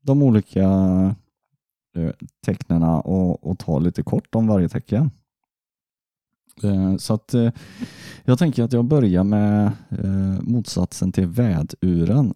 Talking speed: 105 wpm